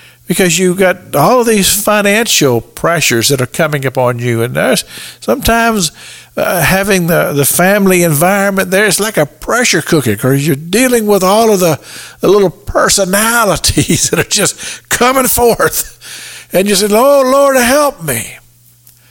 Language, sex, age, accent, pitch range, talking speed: English, male, 60-79, American, 120-180 Hz, 155 wpm